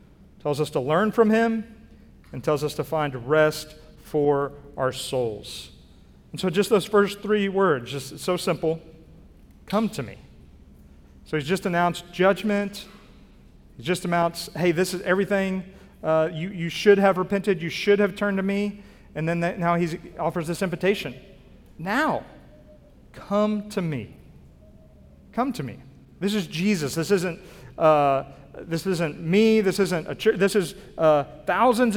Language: English